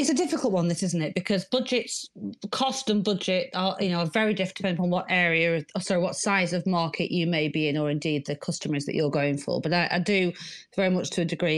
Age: 40-59